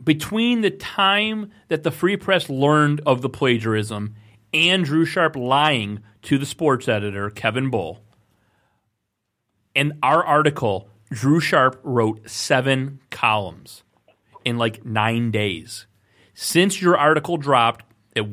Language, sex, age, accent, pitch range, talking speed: English, male, 30-49, American, 110-150 Hz, 125 wpm